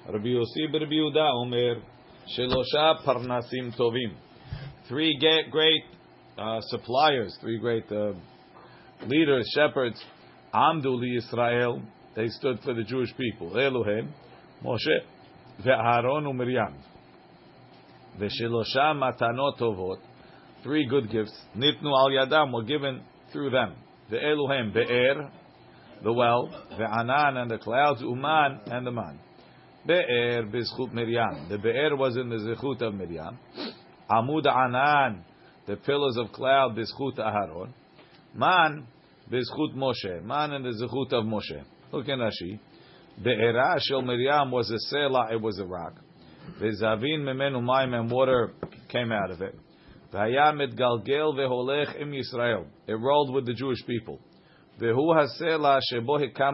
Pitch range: 115-140 Hz